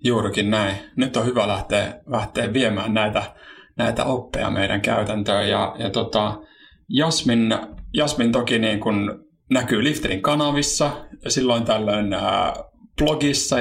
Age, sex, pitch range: 30-49, male, 105-120 Hz